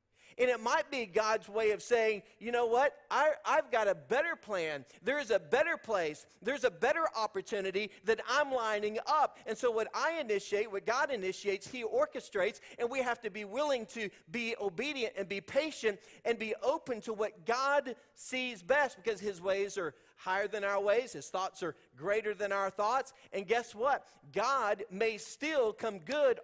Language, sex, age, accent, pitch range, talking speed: English, male, 40-59, American, 200-275 Hz, 185 wpm